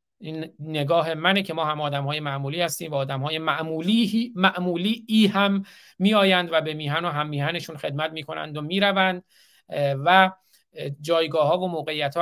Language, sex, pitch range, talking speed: Persian, male, 145-180 Hz, 160 wpm